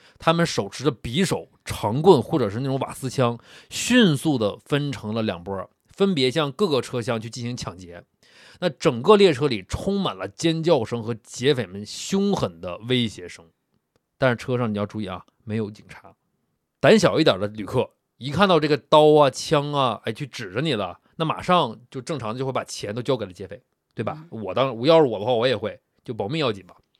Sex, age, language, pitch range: male, 20-39, Chinese, 110-160 Hz